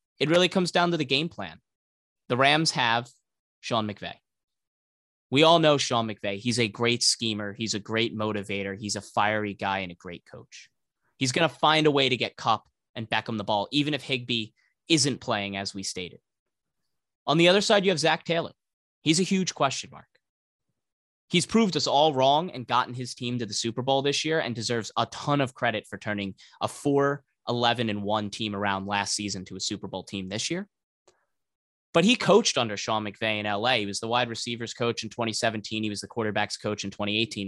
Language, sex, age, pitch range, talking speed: English, male, 20-39, 105-150 Hz, 210 wpm